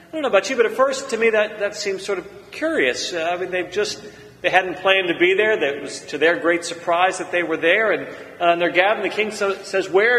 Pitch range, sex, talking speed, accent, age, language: 170-220 Hz, male, 275 wpm, American, 40-59, English